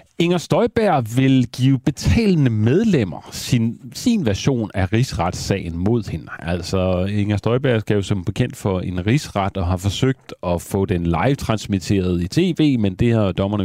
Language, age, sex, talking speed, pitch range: Danish, 40-59, male, 160 wpm, 90-125 Hz